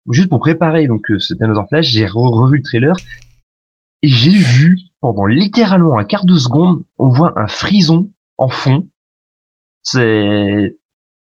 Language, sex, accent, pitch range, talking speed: French, male, French, 110-155 Hz, 145 wpm